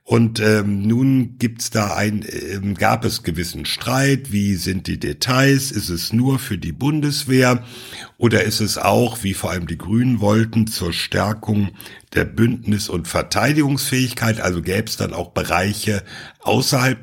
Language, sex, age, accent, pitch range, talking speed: German, male, 60-79, German, 100-130 Hz, 155 wpm